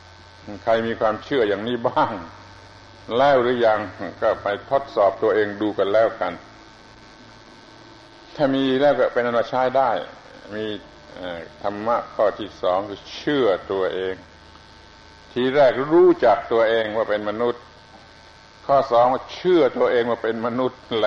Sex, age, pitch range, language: male, 60-79, 100-130 Hz, Thai